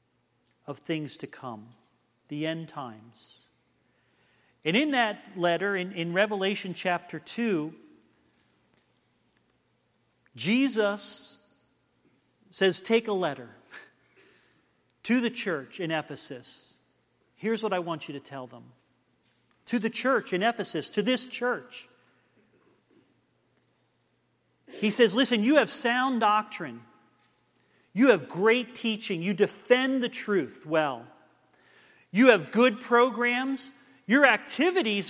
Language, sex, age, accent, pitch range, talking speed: English, male, 40-59, American, 145-230 Hz, 110 wpm